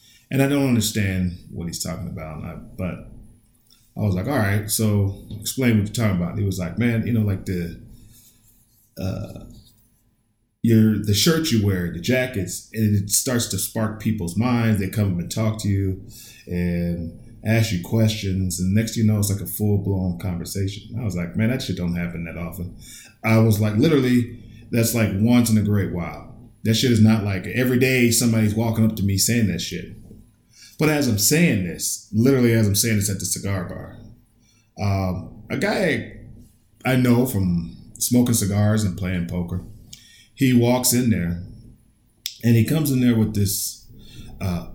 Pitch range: 100-115 Hz